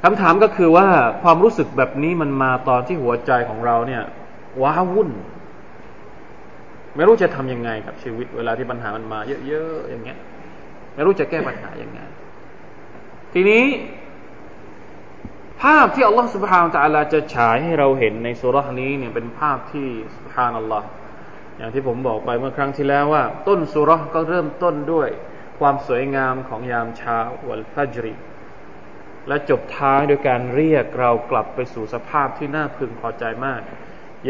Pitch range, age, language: 120-160 Hz, 20-39, Thai